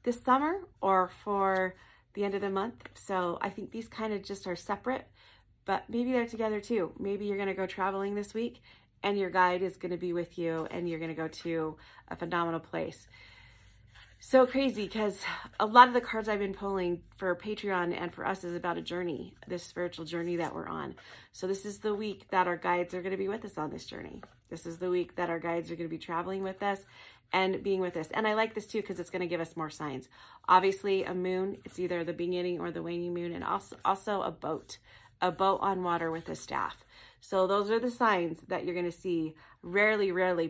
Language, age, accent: English, 30-49, American